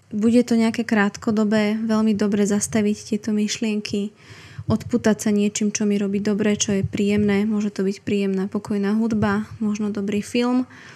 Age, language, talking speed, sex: 20-39, Slovak, 155 wpm, female